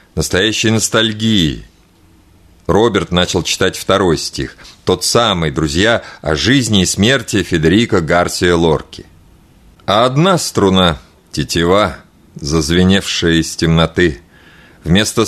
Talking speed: 100 wpm